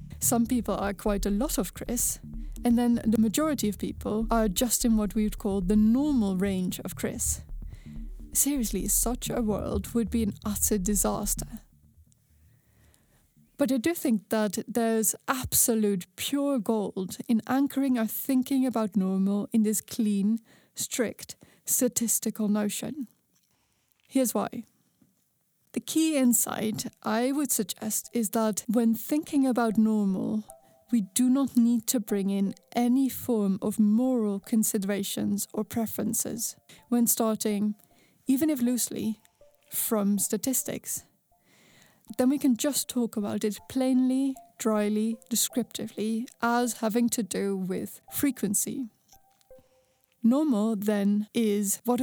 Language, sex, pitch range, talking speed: English, female, 210-245 Hz, 125 wpm